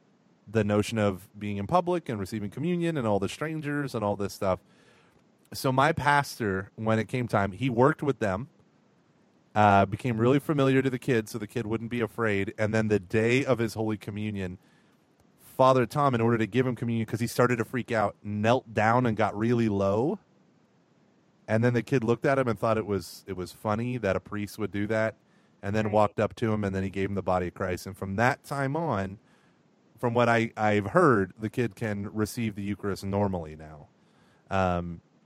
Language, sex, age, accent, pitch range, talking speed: English, male, 30-49, American, 105-135 Hz, 210 wpm